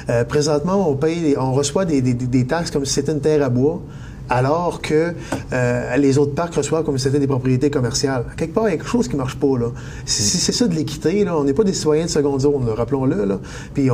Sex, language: male, French